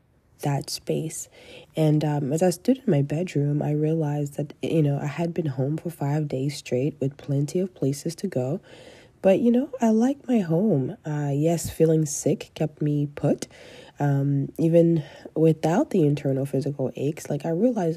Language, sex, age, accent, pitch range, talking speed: English, female, 20-39, American, 145-170 Hz, 175 wpm